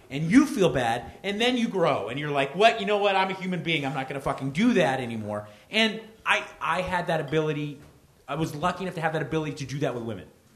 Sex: male